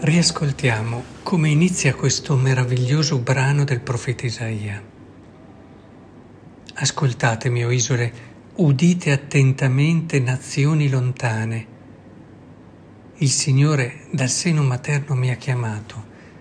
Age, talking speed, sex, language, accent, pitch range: 60-79, 90 wpm, male, Italian, native, 120-145 Hz